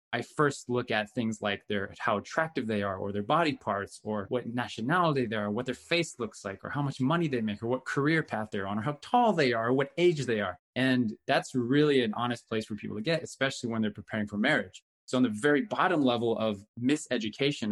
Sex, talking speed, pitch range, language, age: male, 235 wpm, 110-140 Hz, English, 20-39